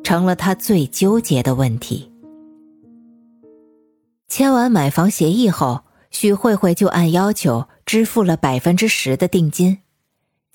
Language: Chinese